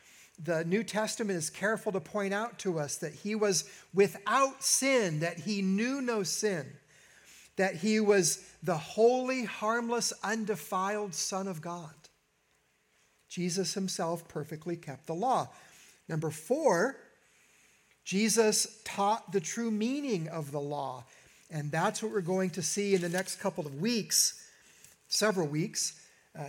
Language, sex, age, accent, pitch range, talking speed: English, male, 50-69, American, 175-225 Hz, 140 wpm